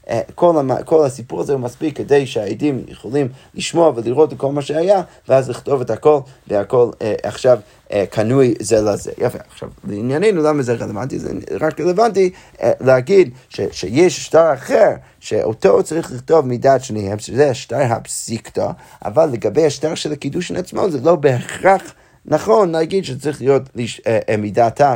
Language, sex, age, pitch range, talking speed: Hebrew, male, 30-49, 120-155 Hz, 155 wpm